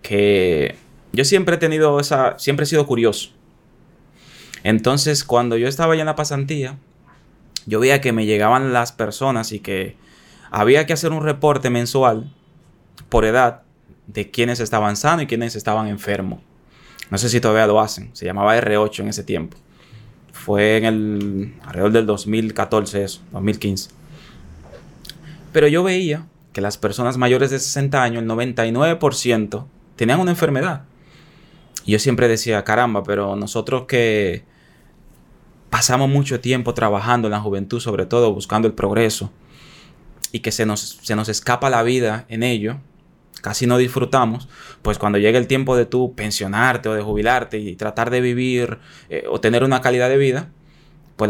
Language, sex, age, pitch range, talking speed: Spanish, male, 20-39, 105-135 Hz, 160 wpm